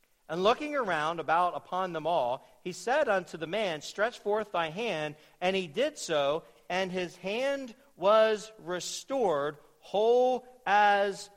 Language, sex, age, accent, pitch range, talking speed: English, male, 40-59, American, 150-195 Hz, 145 wpm